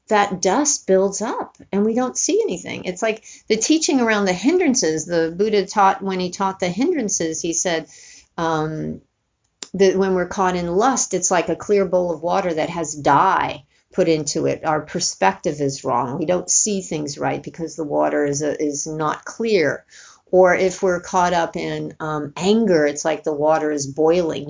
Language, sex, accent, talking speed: English, female, American, 190 wpm